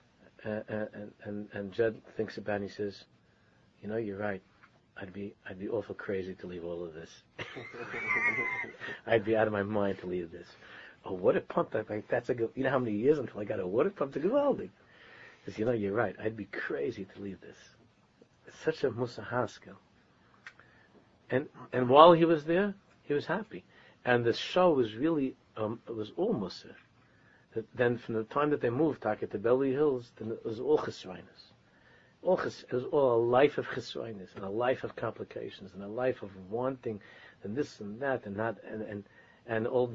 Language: English